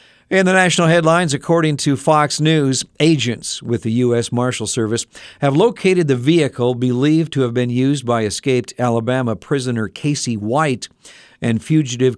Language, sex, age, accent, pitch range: Japanese, male, 50-69, American, 115-145 Hz